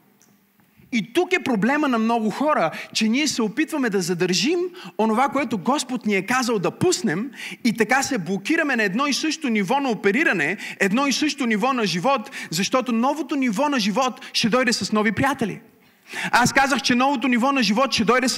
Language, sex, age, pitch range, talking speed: Bulgarian, male, 30-49, 210-275 Hz, 185 wpm